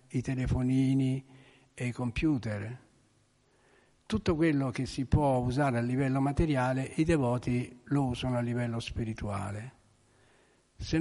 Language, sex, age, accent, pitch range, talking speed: Italian, male, 60-79, native, 115-145 Hz, 120 wpm